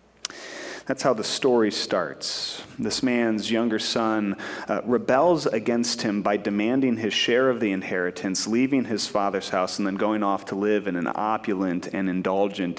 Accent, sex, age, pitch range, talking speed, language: American, male, 30-49, 105-155 Hz, 165 wpm, English